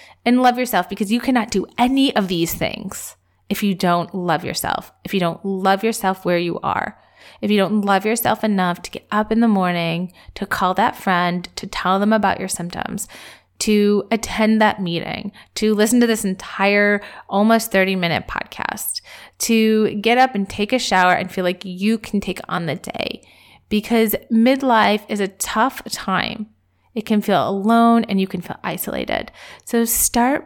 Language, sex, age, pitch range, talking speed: English, female, 30-49, 190-230 Hz, 180 wpm